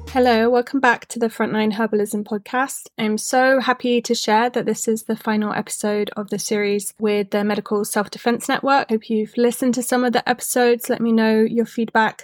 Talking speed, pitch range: 195 wpm, 210-235 Hz